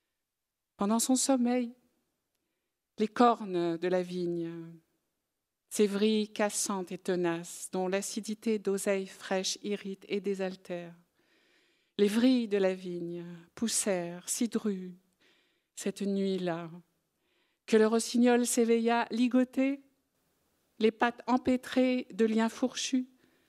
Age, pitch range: 50-69, 190-255 Hz